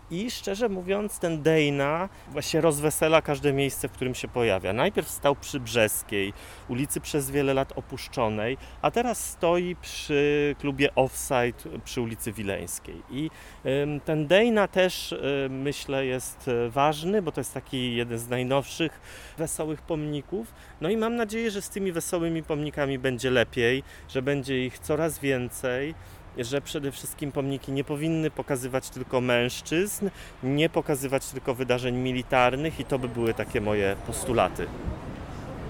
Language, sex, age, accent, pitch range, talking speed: Polish, male, 30-49, native, 125-155 Hz, 140 wpm